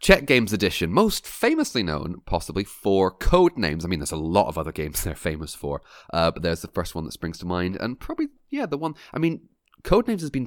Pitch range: 90-135 Hz